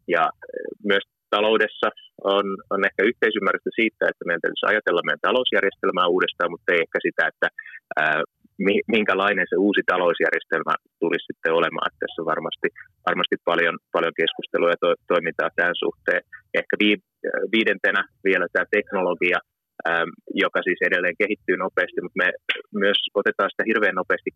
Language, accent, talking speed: Finnish, native, 140 wpm